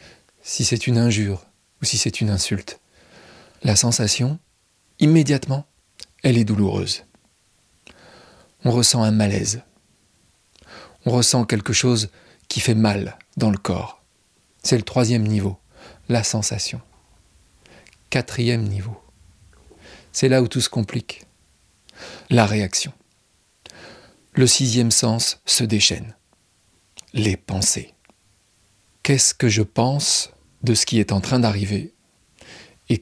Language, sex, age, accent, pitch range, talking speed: French, male, 40-59, French, 105-125 Hz, 115 wpm